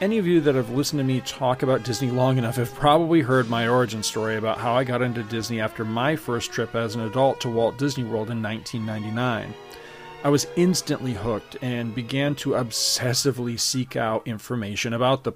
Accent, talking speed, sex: American, 200 wpm, male